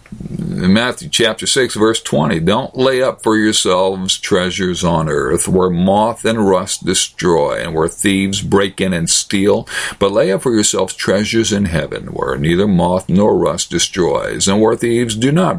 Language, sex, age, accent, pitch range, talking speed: English, male, 50-69, American, 100-145 Hz, 170 wpm